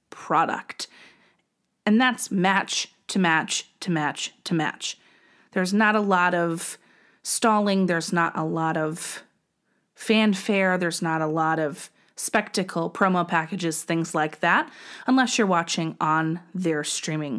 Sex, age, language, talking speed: female, 30-49, English, 135 wpm